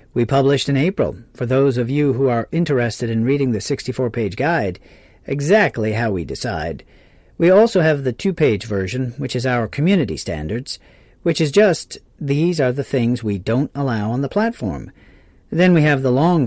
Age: 50-69